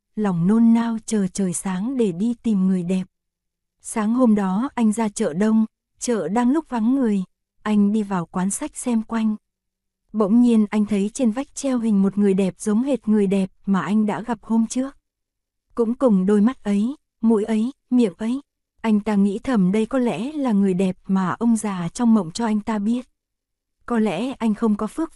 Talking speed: 205 wpm